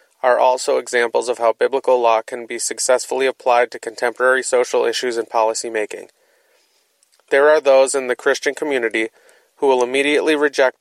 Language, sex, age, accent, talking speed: English, male, 30-49, American, 160 wpm